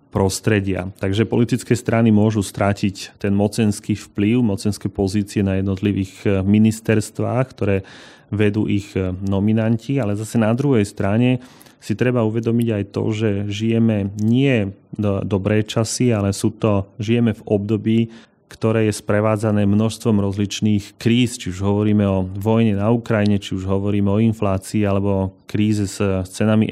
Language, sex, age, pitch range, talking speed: Slovak, male, 30-49, 100-115 Hz, 140 wpm